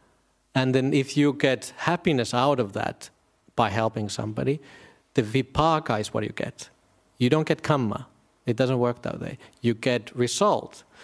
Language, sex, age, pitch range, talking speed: English, male, 50-69, 115-150 Hz, 165 wpm